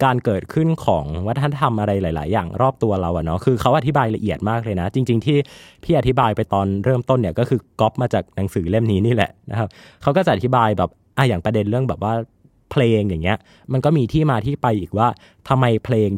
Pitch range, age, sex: 100-125 Hz, 20-39, male